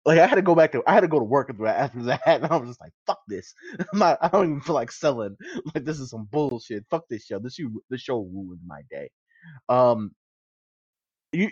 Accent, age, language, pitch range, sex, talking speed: American, 20-39, English, 100-150 Hz, male, 240 wpm